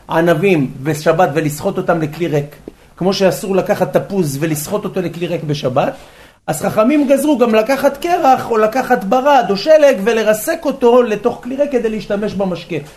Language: Hebrew